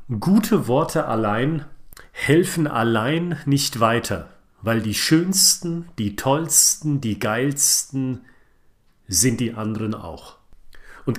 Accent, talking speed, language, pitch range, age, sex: German, 100 wpm, German, 115-150 Hz, 40-59, male